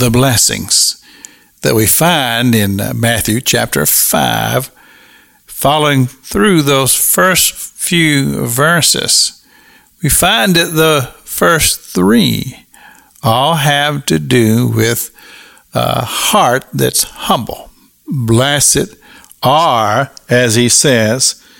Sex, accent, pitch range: male, American, 115-155 Hz